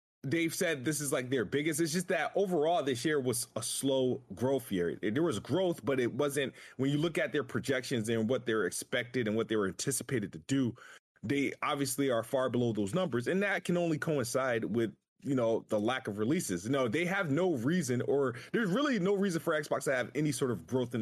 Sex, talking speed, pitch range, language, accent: male, 225 wpm, 125-165 Hz, English, American